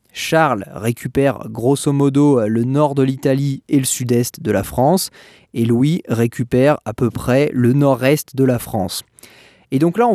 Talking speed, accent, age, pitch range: 170 wpm, French, 20-39, 125-160 Hz